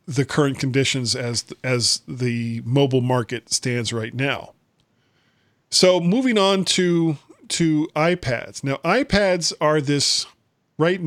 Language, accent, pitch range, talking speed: English, American, 130-175 Hz, 120 wpm